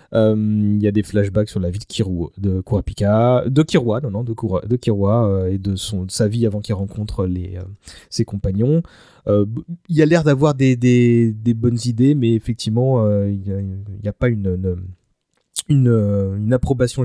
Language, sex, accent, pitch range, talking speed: French, male, French, 110-135 Hz, 160 wpm